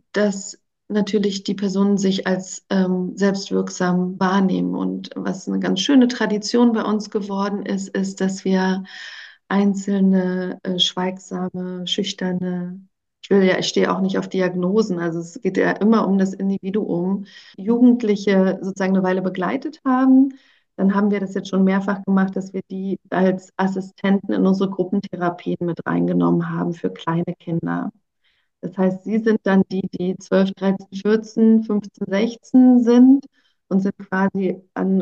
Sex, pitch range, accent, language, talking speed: female, 185-205 Hz, German, German, 145 wpm